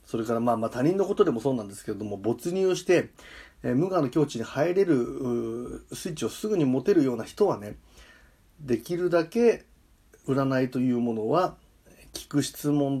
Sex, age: male, 30-49